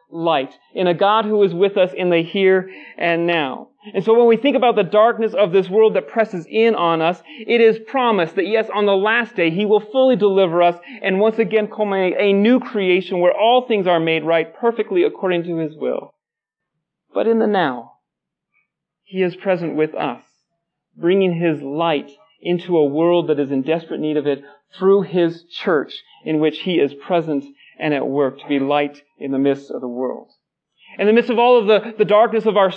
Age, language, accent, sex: 40-59, English, American, male